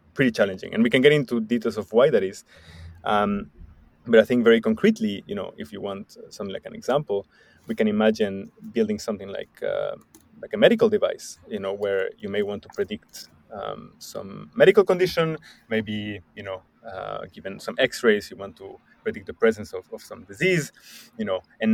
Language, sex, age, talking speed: English, male, 20-39, 195 wpm